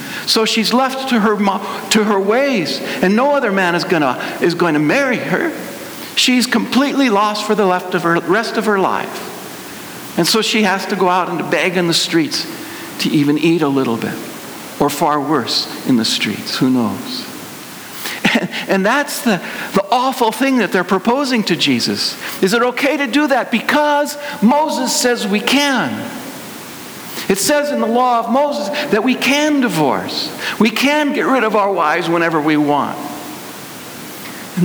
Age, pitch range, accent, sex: 60-79, 180-265 Hz, American, male